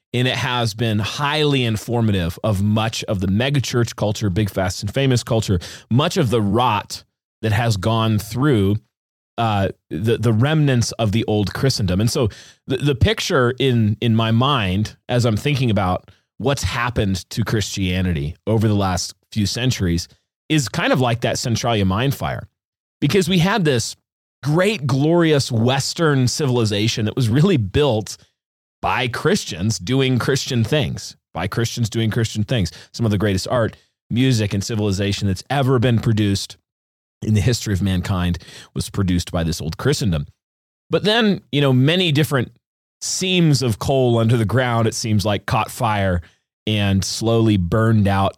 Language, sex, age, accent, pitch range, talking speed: English, male, 30-49, American, 100-130 Hz, 160 wpm